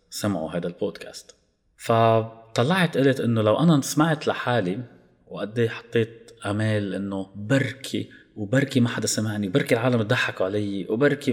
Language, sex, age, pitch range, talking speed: Arabic, male, 30-49, 95-125 Hz, 125 wpm